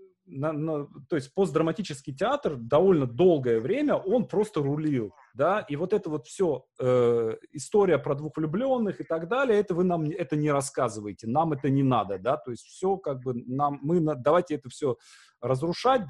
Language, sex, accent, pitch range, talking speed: Russian, male, native, 135-190 Hz, 185 wpm